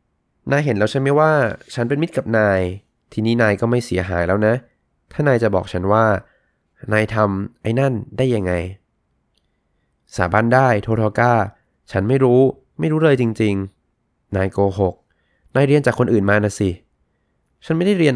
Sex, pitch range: male, 95-120 Hz